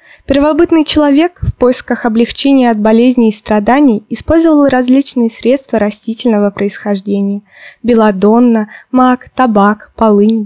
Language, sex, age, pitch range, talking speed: Russian, female, 20-39, 215-275 Hz, 110 wpm